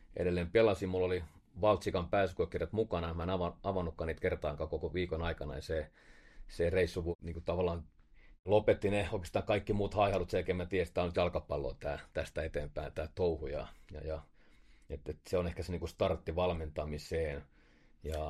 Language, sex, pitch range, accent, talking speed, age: Finnish, male, 80-95 Hz, native, 175 wpm, 30-49